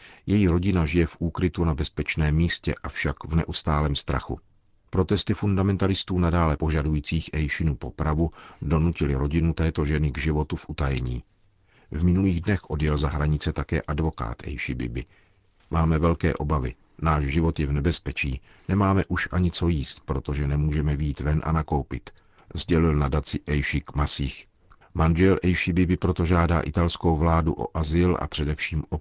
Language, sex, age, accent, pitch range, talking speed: Czech, male, 50-69, native, 75-85 Hz, 150 wpm